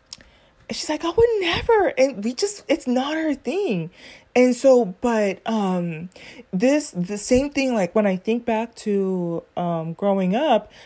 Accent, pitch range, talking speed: American, 180-235 Hz, 150 wpm